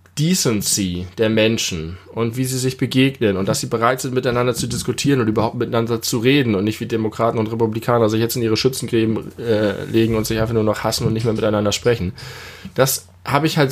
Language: German